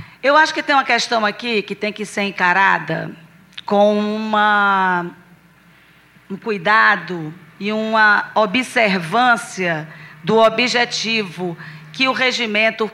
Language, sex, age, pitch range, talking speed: Portuguese, female, 40-59, 195-250 Hz, 105 wpm